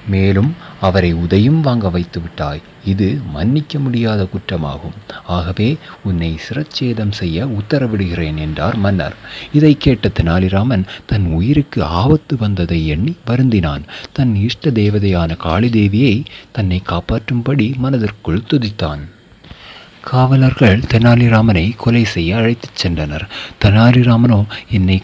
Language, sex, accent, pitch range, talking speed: Tamil, male, native, 90-120 Hz, 100 wpm